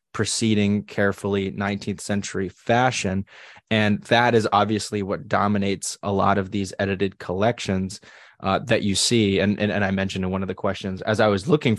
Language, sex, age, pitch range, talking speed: English, male, 20-39, 100-110 Hz, 180 wpm